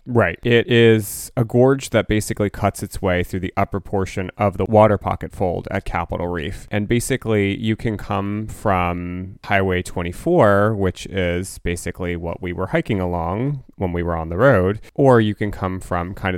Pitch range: 90-105 Hz